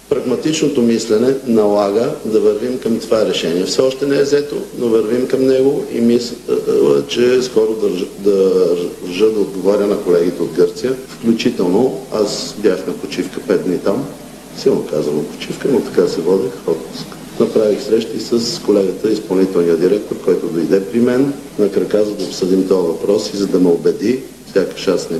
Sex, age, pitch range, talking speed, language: male, 50-69, 105-130 Hz, 170 wpm, Bulgarian